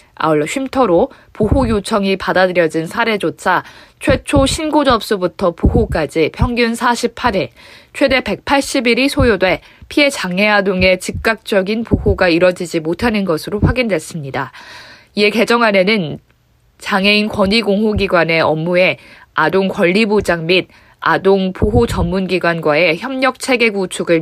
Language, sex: Korean, female